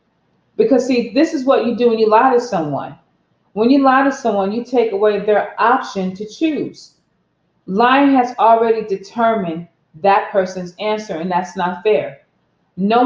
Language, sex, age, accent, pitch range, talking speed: English, female, 30-49, American, 180-230 Hz, 165 wpm